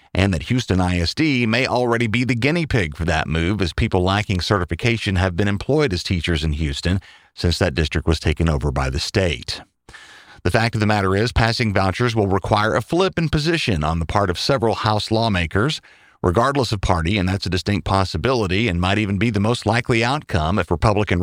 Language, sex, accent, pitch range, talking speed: English, male, American, 95-120 Hz, 205 wpm